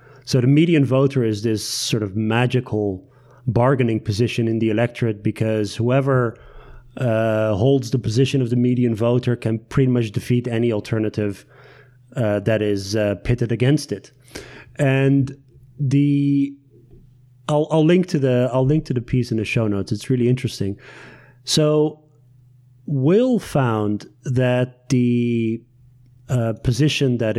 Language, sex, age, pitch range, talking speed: Dutch, male, 30-49, 115-135 Hz, 140 wpm